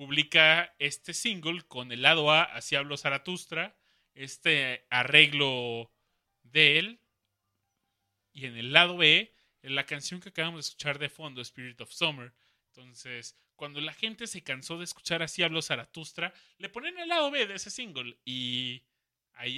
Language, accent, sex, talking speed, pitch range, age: Spanish, Mexican, male, 155 wpm, 125-165 Hz, 30-49